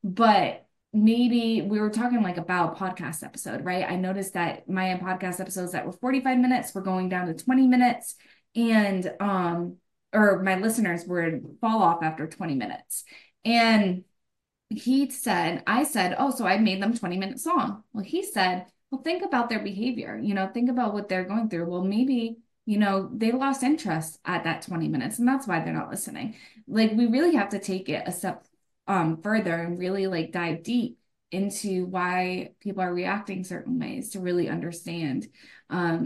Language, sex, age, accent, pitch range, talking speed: English, female, 20-39, American, 180-235 Hz, 185 wpm